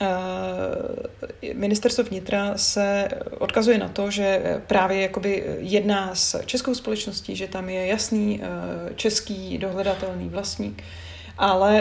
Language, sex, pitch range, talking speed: Czech, female, 190-215 Hz, 100 wpm